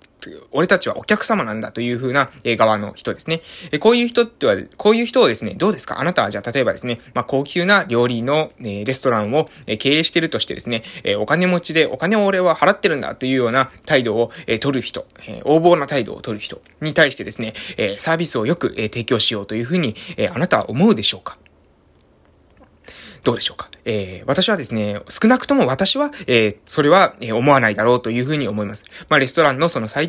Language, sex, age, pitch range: Japanese, male, 20-39, 115-170 Hz